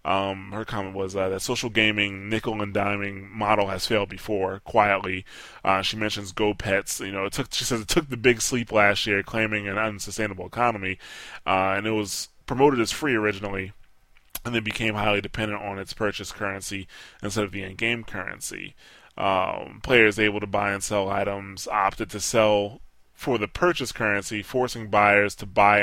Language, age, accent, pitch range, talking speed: English, 20-39, American, 95-105 Hz, 175 wpm